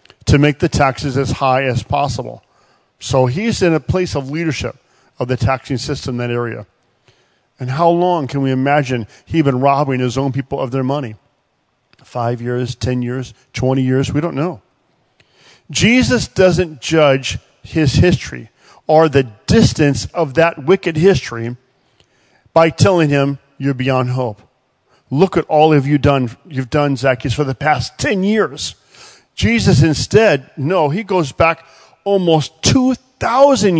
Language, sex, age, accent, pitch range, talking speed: English, male, 40-59, American, 130-170 Hz, 155 wpm